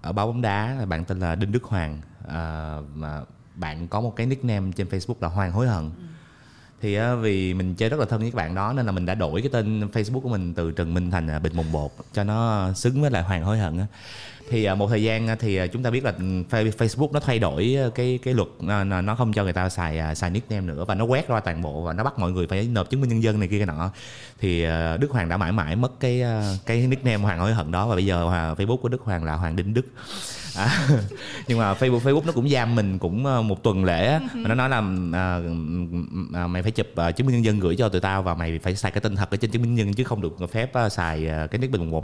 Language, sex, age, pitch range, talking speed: Vietnamese, male, 20-39, 90-125 Hz, 265 wpm